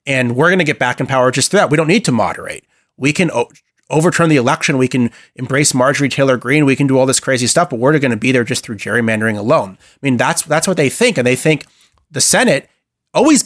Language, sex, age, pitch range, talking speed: English, male, 30-49, 115-140 Hz, 255 wpm